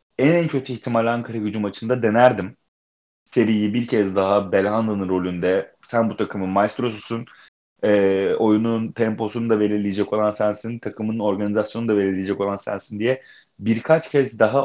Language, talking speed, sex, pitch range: Turkish, 145 wpm, male, 105-130 Hz